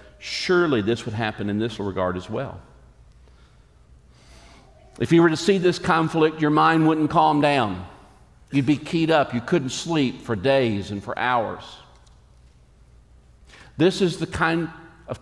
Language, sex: English, male